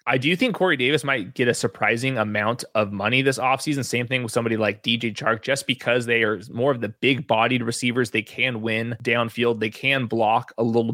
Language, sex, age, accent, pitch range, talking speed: English, male, 20-39, American, 115-135 Hz, 220 wpm